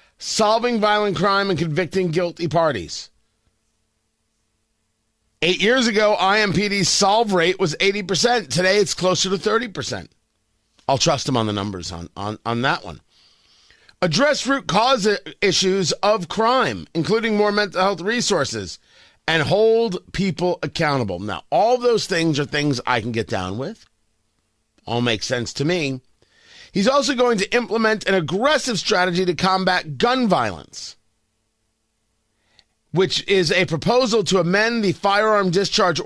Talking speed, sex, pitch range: 140 wpm, male, 140-215 Hz